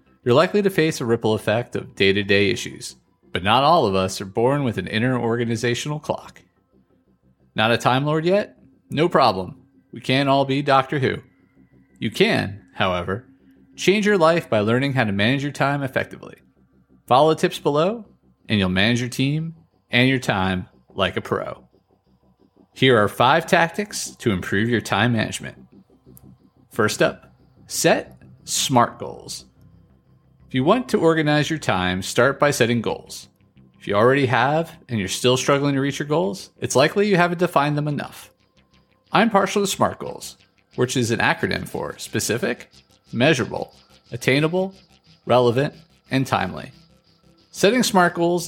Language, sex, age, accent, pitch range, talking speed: English, male, 30-49, American, 95-155 Hz, 155 wpm